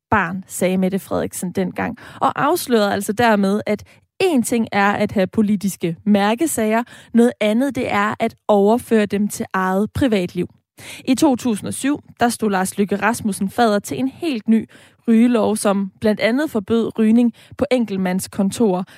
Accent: native